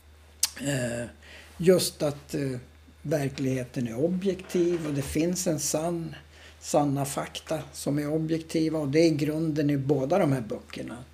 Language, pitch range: Swedish, 105-160 Hz